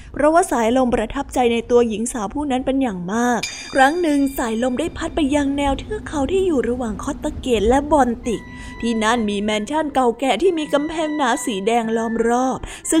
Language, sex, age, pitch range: Thai, female, 20-39, 225-290 Hz